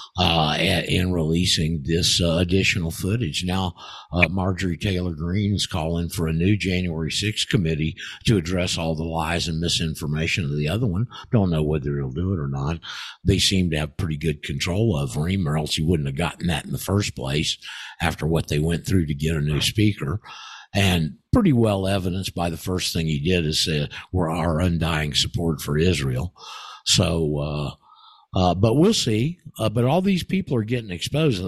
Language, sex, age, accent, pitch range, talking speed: English, male, 50-69, American, 80-105 Hz, 195 wpm